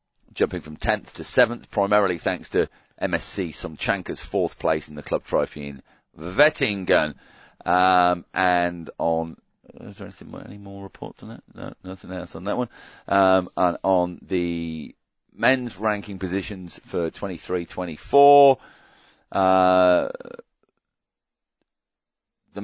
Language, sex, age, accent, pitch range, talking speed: English, male, 40-59, British, 80-100 Hz, 120 wpm